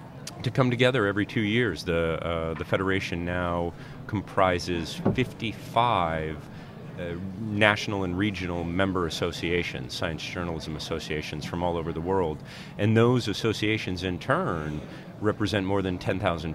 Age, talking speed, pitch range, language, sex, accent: 40-59, 130 wpm, 90-110 Hz, English, male, American